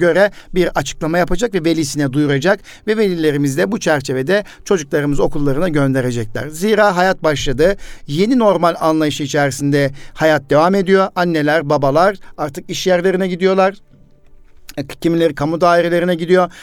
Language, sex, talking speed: Turkish, male, 125 wpm